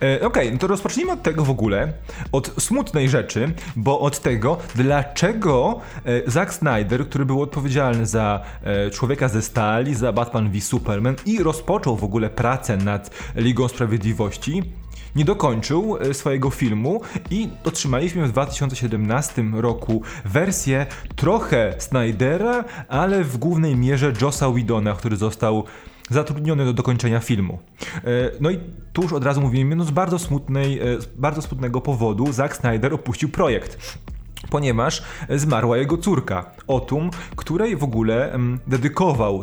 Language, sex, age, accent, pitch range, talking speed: Polish, male, 20-39, native, 115-150 Hz, 135 wpm